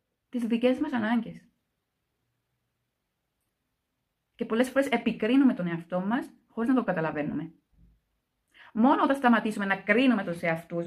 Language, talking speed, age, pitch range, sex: Greek, 120 wpm, 30-49, 175-240 Hz, female